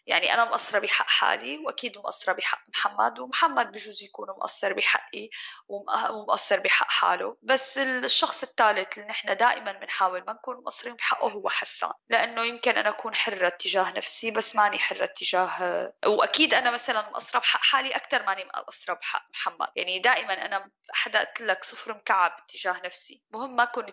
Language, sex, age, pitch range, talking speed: German, female, 10-29, 195-240 Hz, 160 wpm